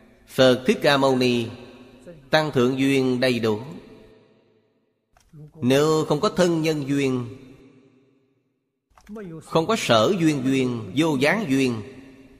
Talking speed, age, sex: 115 wpm, 30-49, male